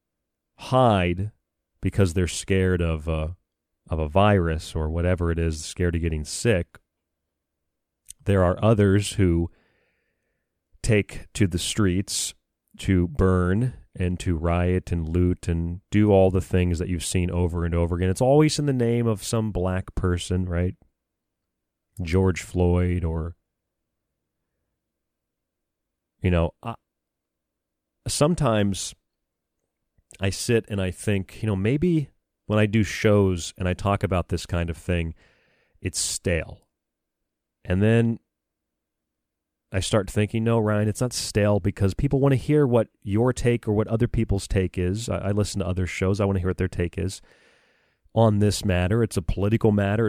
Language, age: English, 30-49